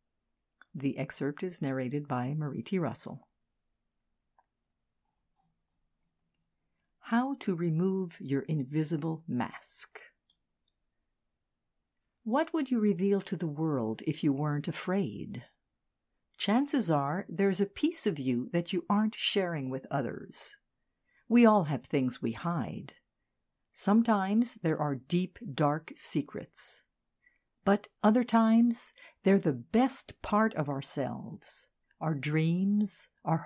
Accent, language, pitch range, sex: American, English, 150-225 Hz, female